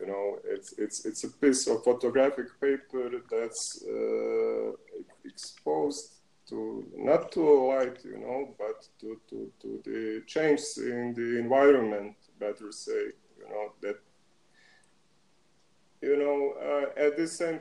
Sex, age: male, 30-49